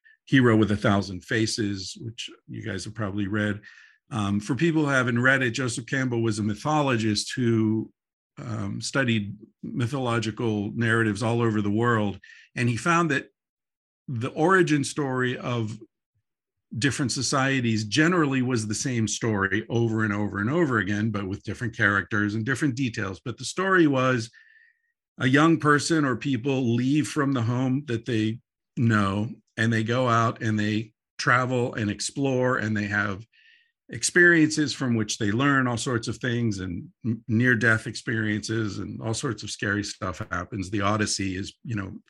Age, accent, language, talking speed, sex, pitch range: 50-69, American, English, 160 wpm, male, 105-130 Hz